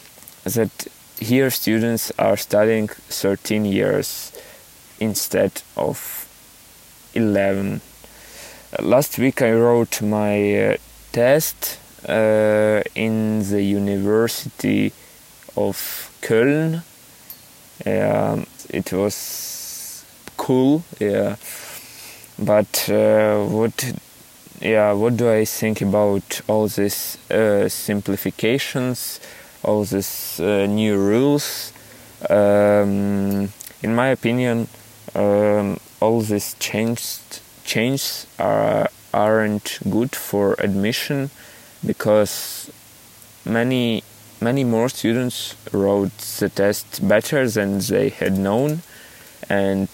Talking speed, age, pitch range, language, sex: 90 wpm, 20-39, 100-120 Hz, Ukrainian, male